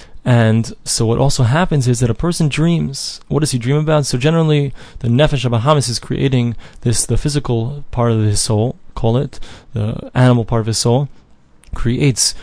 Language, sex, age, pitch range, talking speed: English, male, 20-39, 115-140 Hz, 190 wpm